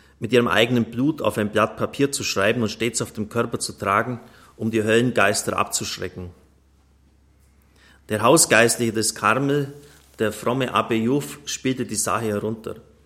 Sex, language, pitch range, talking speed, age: male, German, 80-115 Hz, 150 wpm, 30-49